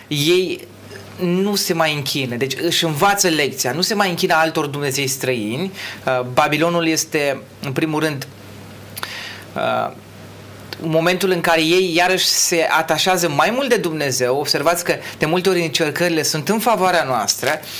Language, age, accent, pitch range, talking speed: Romanian, 30-49, native, 130-170 Hz, 140 wpm